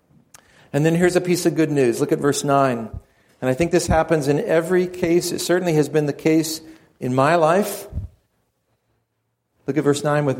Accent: American